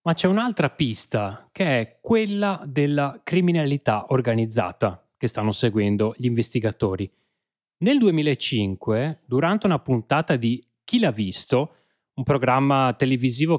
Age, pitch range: 30-49, 115-175 Hz